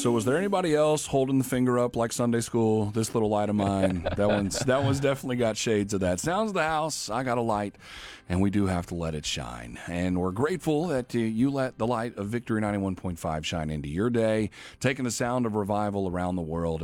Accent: American